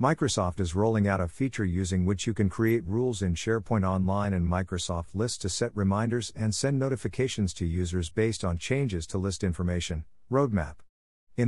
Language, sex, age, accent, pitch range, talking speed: English, male, 50-69, American, 85-115 Hz, 180 wpm